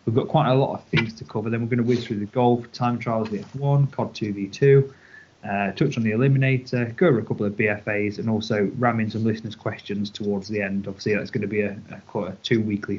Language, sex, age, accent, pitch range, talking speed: English, male, 20-39, British, 105-125 Hz, 245 wpm